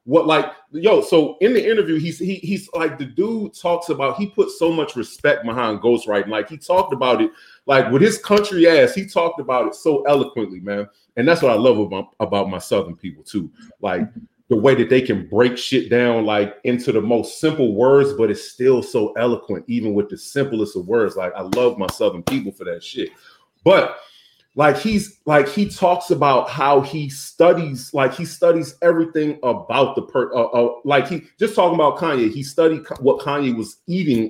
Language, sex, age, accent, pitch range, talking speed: English, male, 30-49, American, 125-185 Hz, 205 wpm